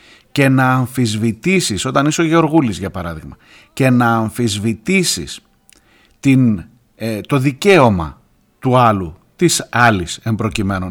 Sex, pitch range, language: male, 110-165 Hz, Greek